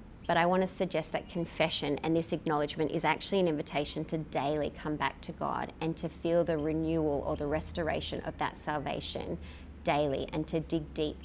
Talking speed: 190 wpm